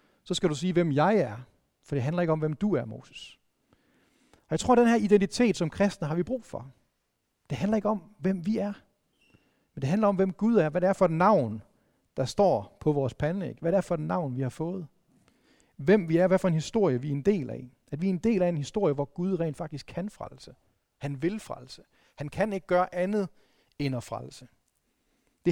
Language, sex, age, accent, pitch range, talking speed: Danish, male, 40-59, native, 145-195 Hz, 235 wpm